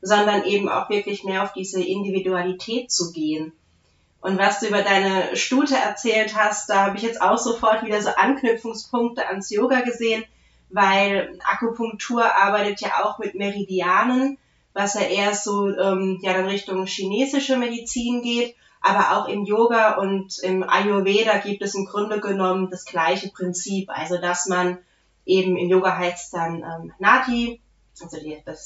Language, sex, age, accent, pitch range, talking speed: German, female, 30-49, German, 185-215 Hz, 160 wpm